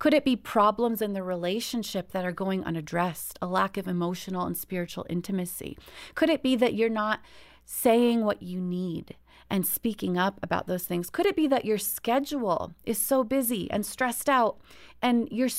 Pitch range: 185-255 Hz